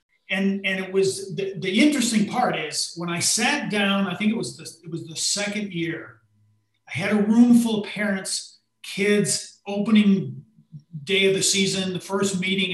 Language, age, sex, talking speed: English, 40-59, male, 185 wpm